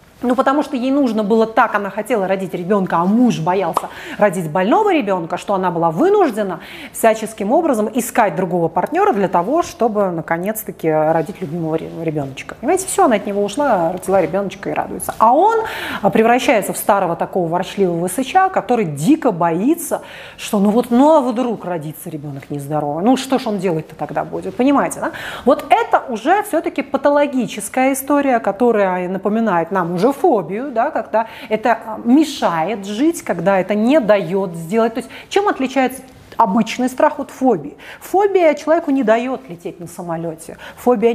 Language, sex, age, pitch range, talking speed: Russian, female, 30-49, 185-285 Hz, 160 wpm